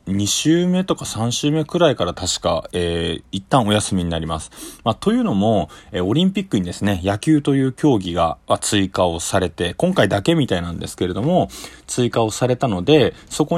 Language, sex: Japanese, male